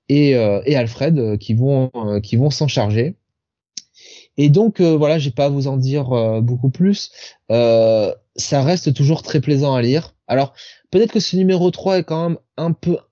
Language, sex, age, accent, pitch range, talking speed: French, male, 20-39, French, 120-155 Hz, 195 wpm